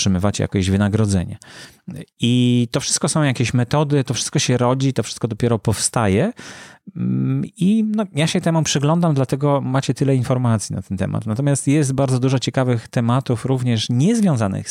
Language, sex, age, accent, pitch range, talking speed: English, male, 30-49, Polish, 100-135 Hz, 150 wpm